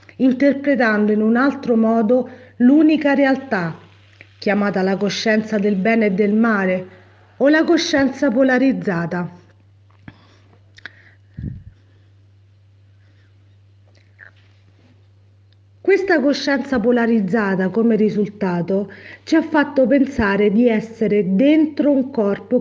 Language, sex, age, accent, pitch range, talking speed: Italian, female, 40-59, native, 175-265 Hz, 90 wpm